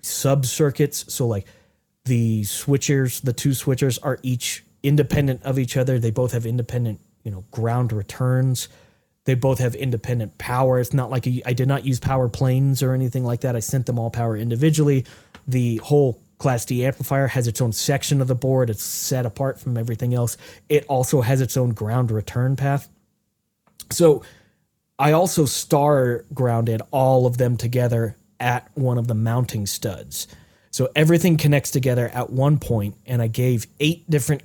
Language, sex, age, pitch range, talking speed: English, male, 20-39, 115-135 Hz, 175 wpm